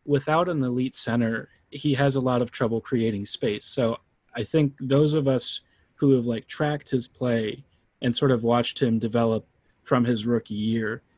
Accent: American